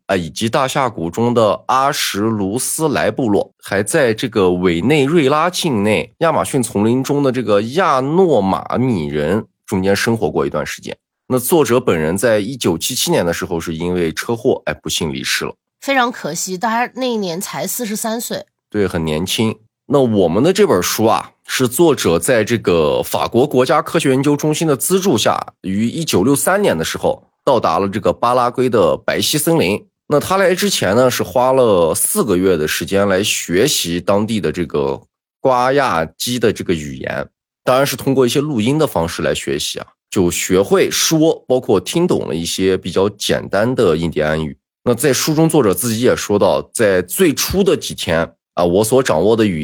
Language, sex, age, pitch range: Chinese, male, 20-39, 100-160 Hz